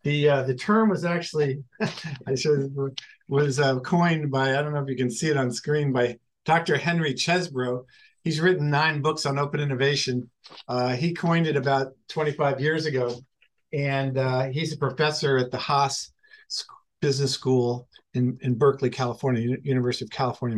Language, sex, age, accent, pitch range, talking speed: English, male, 50-69, American, 135-165 Hz, 170 wpm